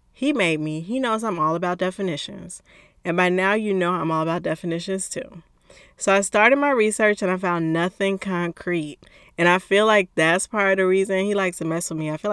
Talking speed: 225 wpm